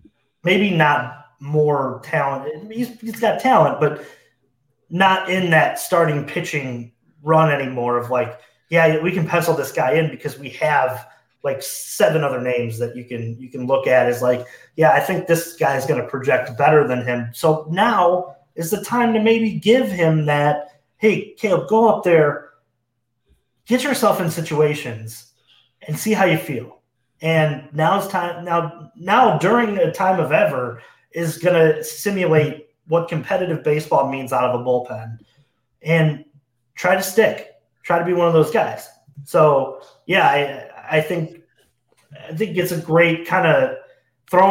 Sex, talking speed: male, 165 wpm